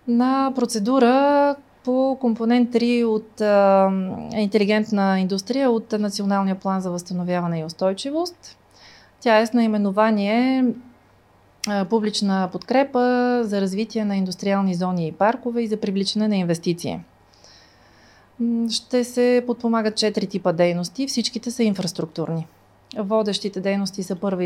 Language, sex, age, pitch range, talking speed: Bulgarian, female, 30-49, 195-240 Hz, 120 wpm